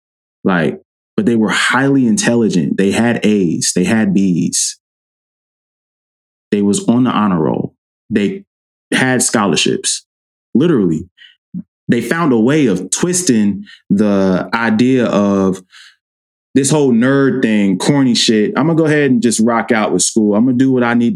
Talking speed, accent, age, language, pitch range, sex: 155 wpm, American, 20-39, English, 100-130 Hz, male